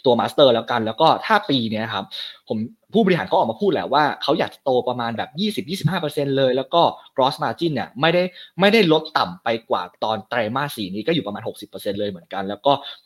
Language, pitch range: Thai, 115-150 Hz